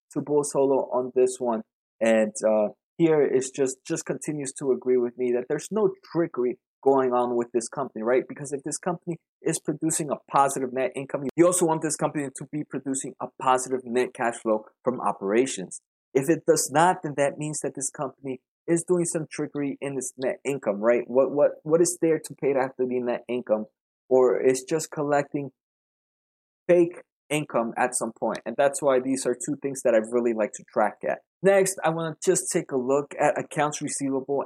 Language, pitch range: English, 125-160 Hz